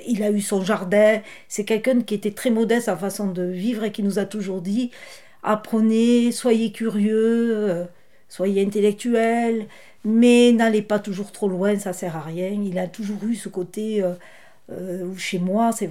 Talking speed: 185 wpm